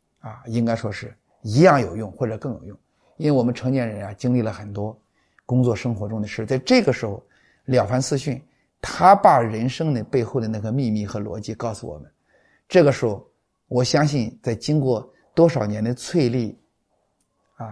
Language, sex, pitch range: Chinese, male, 115-145 Hz